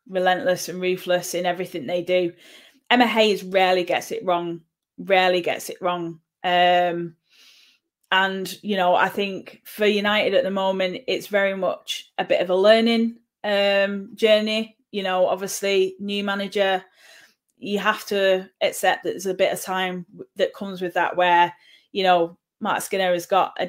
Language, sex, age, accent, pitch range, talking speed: English, female, 10-29, British, 180-205 Hz, 165 wpm